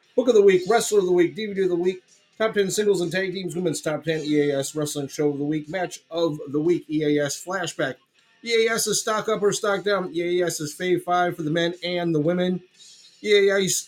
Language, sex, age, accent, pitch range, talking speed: English, male, 30-49, American, 160-205 Hz, 220 wpm